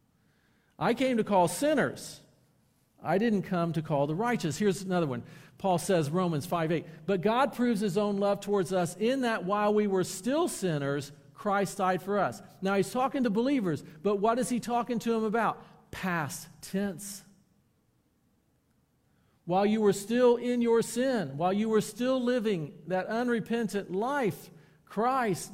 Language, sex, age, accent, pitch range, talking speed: English, male, 50-69, American, 145-200 Hz, 165 wpm